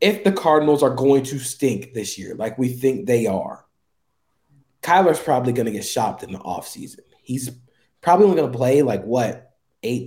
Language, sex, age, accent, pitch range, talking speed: English, male, 20-39, American, 120-140 Hz, 190 wpm